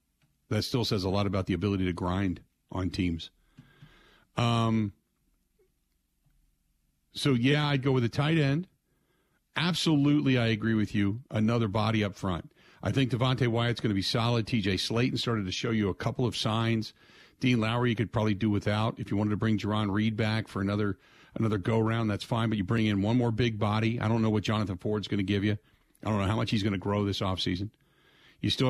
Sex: male